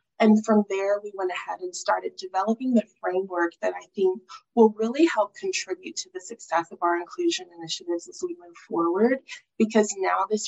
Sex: female